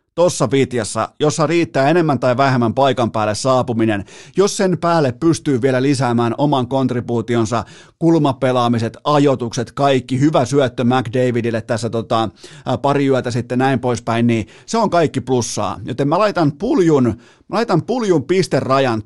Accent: native